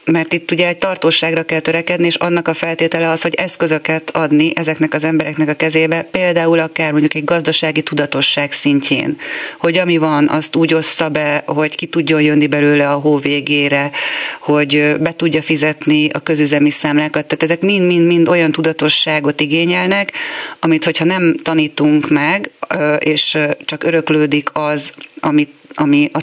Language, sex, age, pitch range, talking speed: Hungarian, female, 30-49, 150-165 Hz, 150 wpm